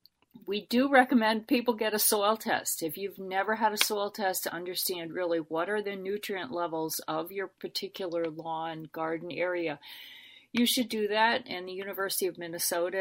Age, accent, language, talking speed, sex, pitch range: 40-59, American, English, 175 wpm, female, 165-215 Hz